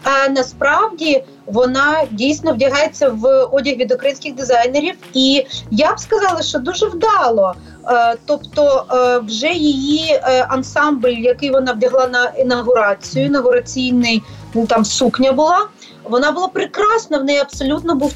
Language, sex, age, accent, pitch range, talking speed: Ukrainian, female, 30-49, native, 235-290 Hz, 120 wpm